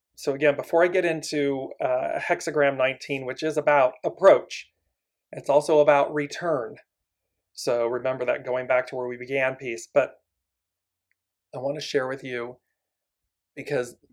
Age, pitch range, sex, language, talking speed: 40-59, 95-155 Hz, male, English, 150 wpm